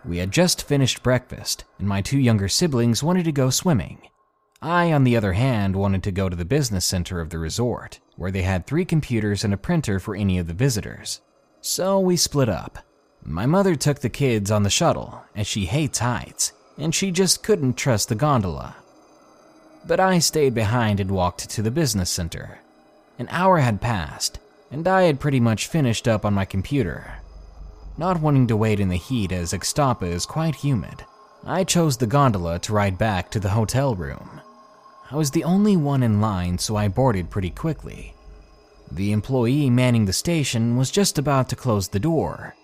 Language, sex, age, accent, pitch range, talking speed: English, male, 20-39, American, 100-145 Hz, 190 wpm